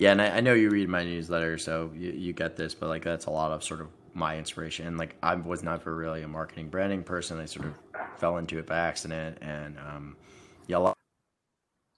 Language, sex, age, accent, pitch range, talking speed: English, male, 20-39, American, 80-90 Hz, 230 wpm